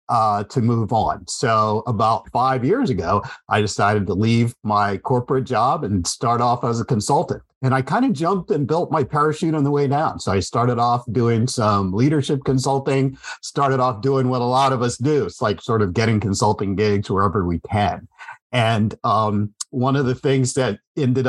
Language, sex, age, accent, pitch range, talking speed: English, male, 50-69, American, 115-140 Hz, 190 wpm